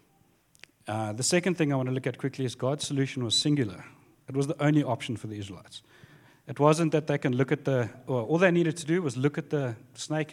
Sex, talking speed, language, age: male, 240 wpm, English, 40-59